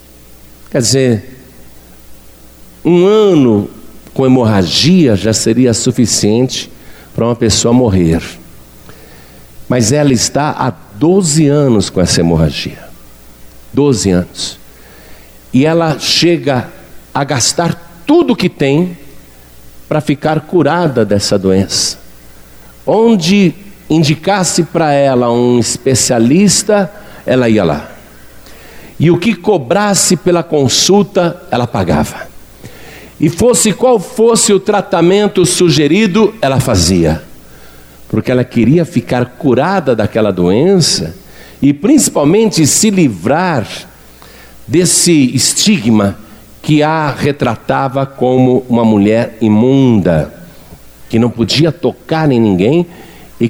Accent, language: Brazilian, Portuguese